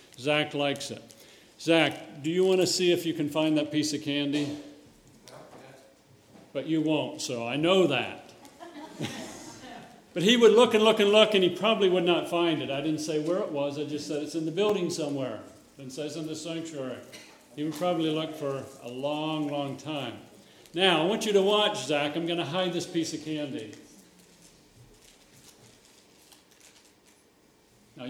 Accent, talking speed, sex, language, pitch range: American, 175 wpm, male, English, 140-180 Hz